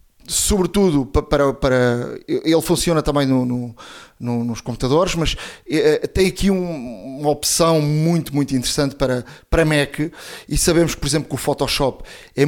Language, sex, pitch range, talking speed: Portuguese, male, 140-175 Hz, 160 wpm